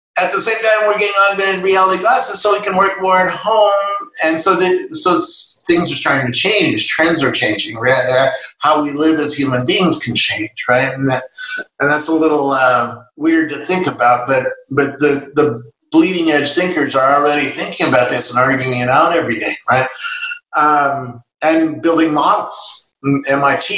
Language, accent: English, American